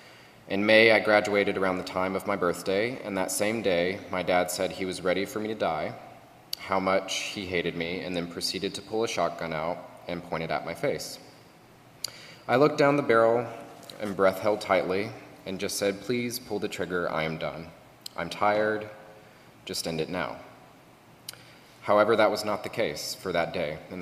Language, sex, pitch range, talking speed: English, male, 85-105 Hz, 195 wpm